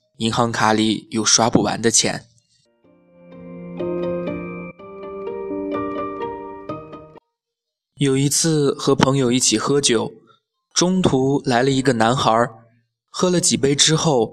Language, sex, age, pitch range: Chinese, male, 20-39, 110-140 Hz